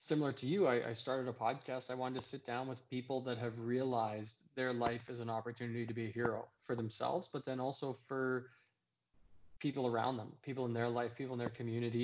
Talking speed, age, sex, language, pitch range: 220 wpm, 20-39, male, English, 115-130 Hz